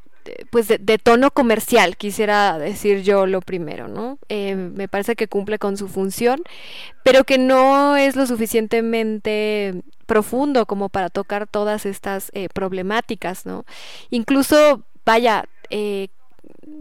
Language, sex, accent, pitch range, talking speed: Spanish, female, Mexican, 200-240 Hz, 130 wpm